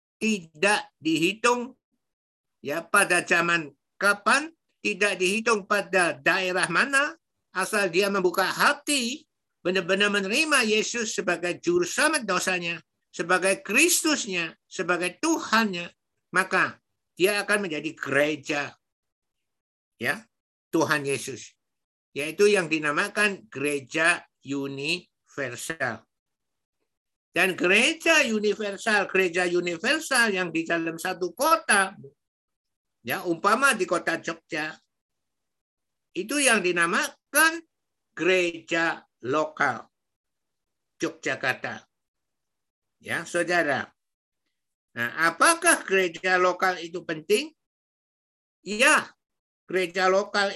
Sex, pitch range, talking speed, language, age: male, 170-220 Hz, 85 wpm, Indonesian, 60-79